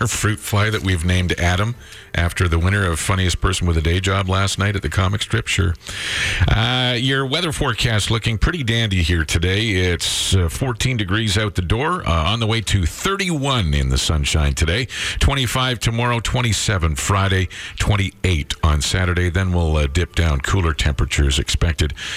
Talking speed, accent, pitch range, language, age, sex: 175 wpm, American, 85-120 Hz, English, 50-69, male